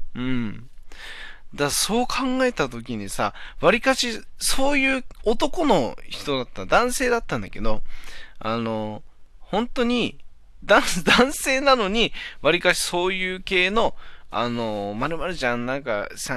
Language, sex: Japanese, male